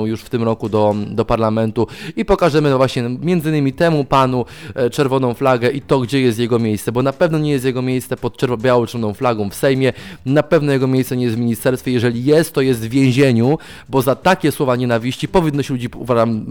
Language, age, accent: Polish, 20-39, native